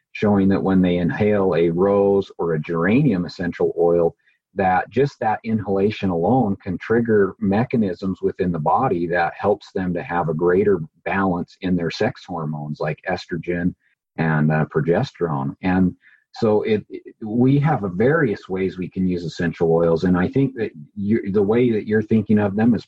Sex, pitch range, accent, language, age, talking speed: male, 85-105 Hz, American, English, 40-59, 175 wpm